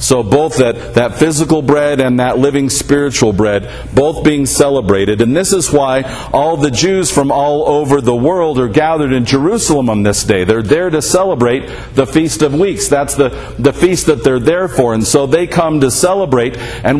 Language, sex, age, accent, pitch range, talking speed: English, male, 50-69, American, 125-150 Hz, 200 wpm